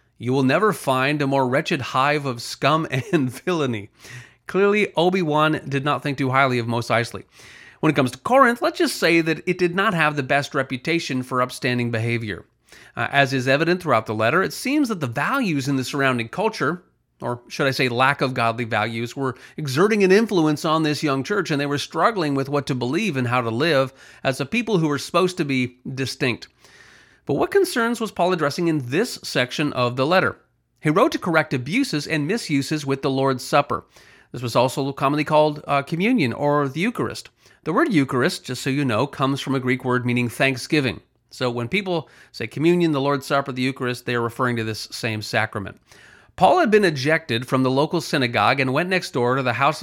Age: 30-49